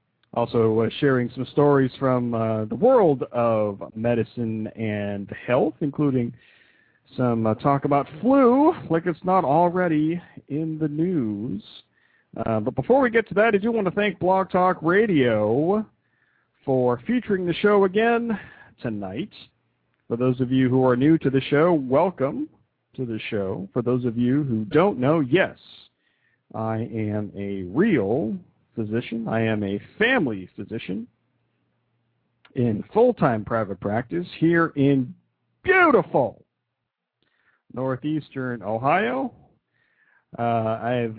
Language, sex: English, male